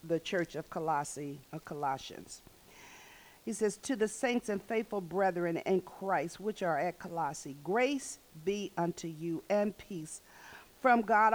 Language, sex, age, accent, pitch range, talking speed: English, female, 50-69, American, 175-210 Hz, 150 wpm